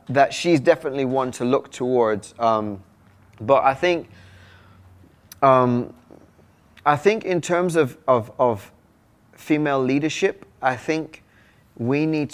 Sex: male